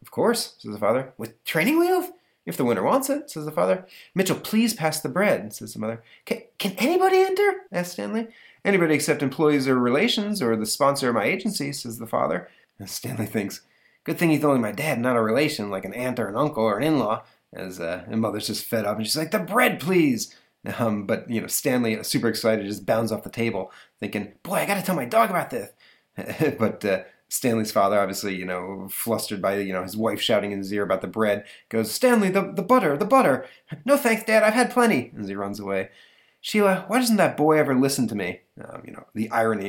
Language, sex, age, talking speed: English, male, 30-49, 225 wpm